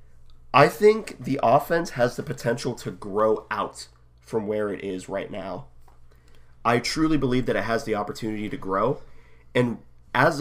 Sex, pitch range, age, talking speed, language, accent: male, 100-140 Hz, 30-49, 160 wpm, English, American